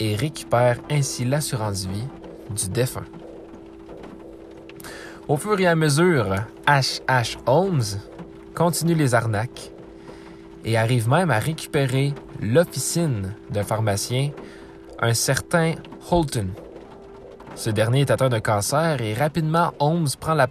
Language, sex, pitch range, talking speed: French, male, 110-145 Hz, 115 wpm